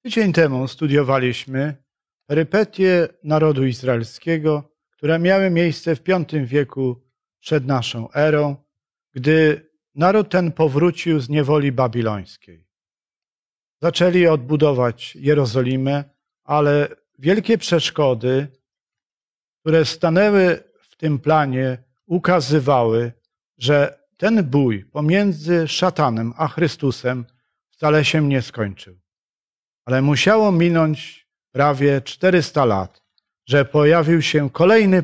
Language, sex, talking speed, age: Polish, male, 95 wpm, 50-69